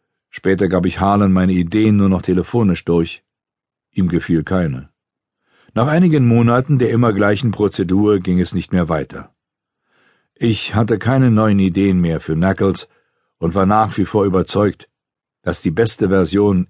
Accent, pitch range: German, 90-115 Hz